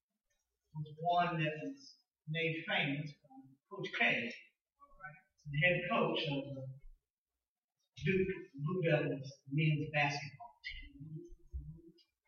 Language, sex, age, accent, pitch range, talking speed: English, male, 40-59, American, 150-220 Hz, 105 wpm